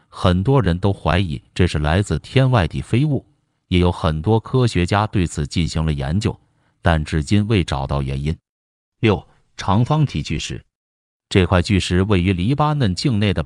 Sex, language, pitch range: male, Chinese, 85-110 Hz